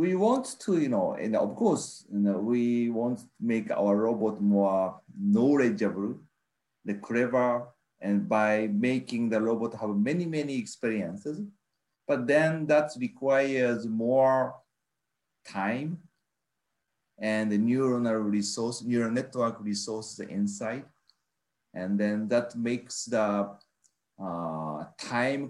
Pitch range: 110-155 Hz